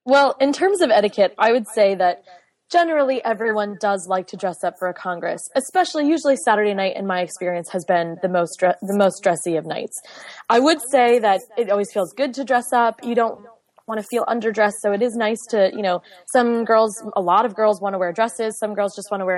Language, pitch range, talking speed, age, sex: English, 195-250 Hz, 235 wpm, 20-39, female